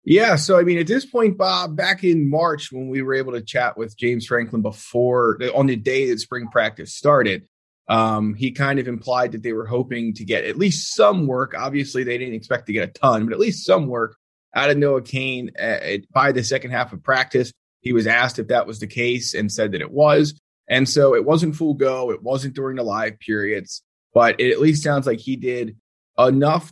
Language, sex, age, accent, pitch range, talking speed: English, male, 30-49, American, 115-155 Hz, 225 wpm